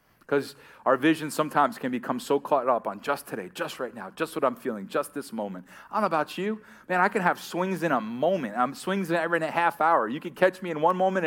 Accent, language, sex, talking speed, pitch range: American, English, male, 255 wpm, 125-175 Hz